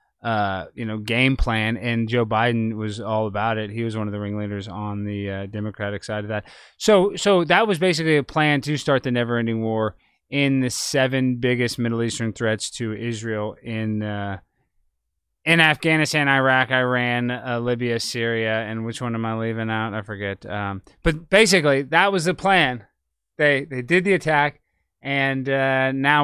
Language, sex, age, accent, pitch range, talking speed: English, male, 20-39, American, 115-145 Hz, 180 wpm